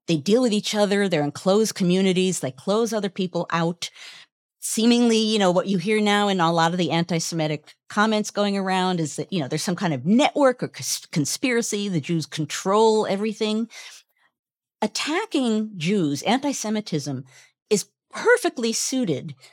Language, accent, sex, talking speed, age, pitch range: English, American, female, 155 wpm, 50-69, 165-230 Hz